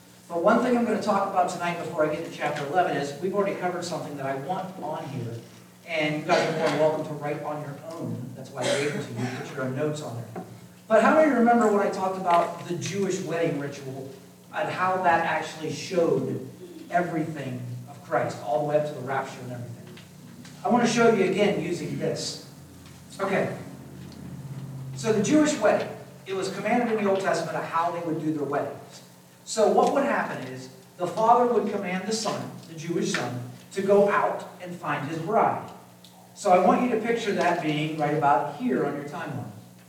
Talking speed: 210 wpm